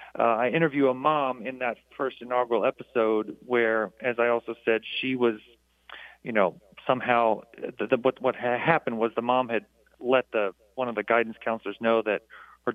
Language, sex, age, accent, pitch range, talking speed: English, male, 40-59, American, 110-130 Hz, 190 wpm